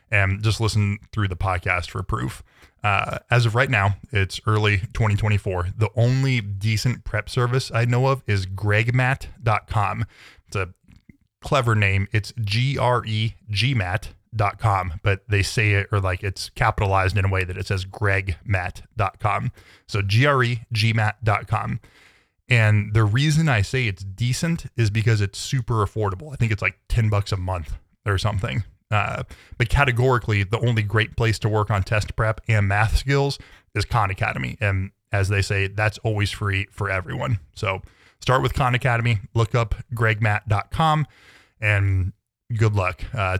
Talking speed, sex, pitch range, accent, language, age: 150 wpm, male, 95-115 Hz, American, English, 20-39